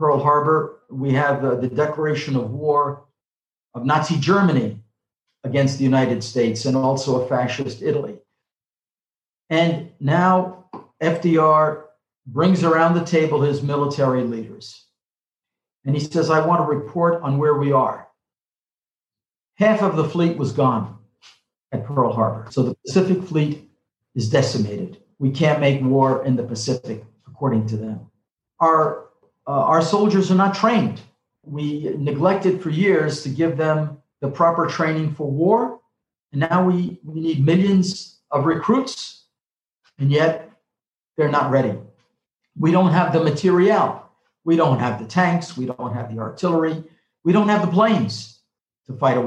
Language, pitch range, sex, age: English, 130-165 Hz, male, 50-69